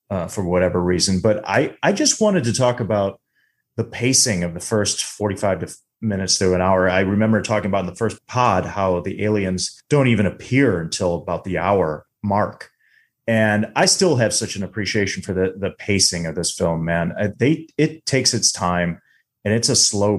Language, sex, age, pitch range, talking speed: English, male, 30-49, 90-120 Hz, 200 wpm